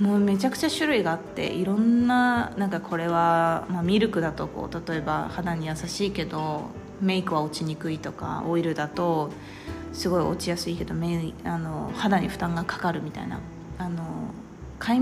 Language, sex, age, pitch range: Japanese, female, 20-39, 170-240 Hz